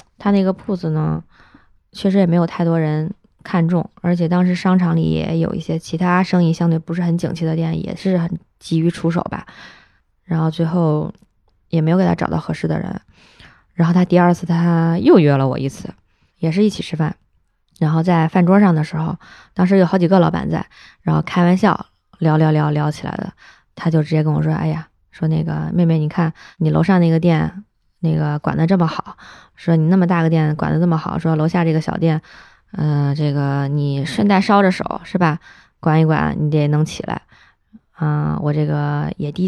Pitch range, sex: 155-180 Hz, female